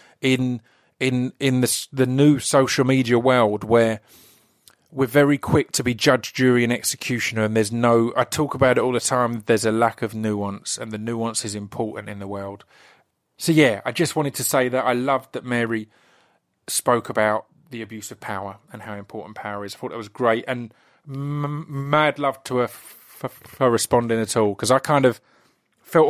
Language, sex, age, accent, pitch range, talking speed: English, male, 30-49, British, 115-140 Hz, 195 wpm